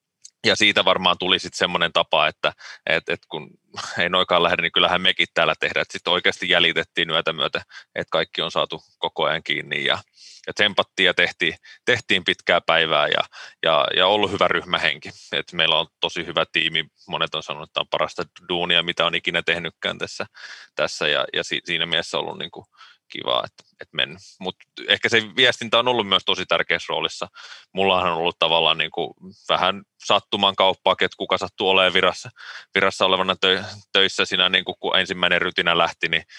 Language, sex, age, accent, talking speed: Finnish, male, 30-49, native, 180 wpm